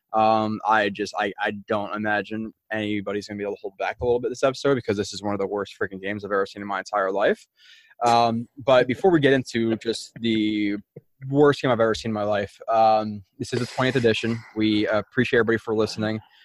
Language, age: English, 20-39